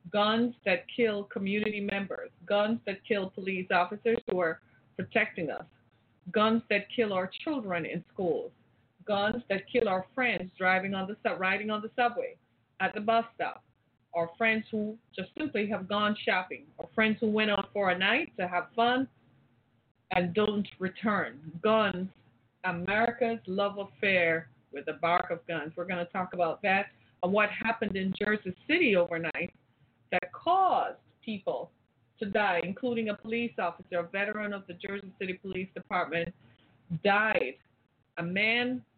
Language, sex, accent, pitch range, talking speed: English, female, American, 170-215 Hz, 155 wpm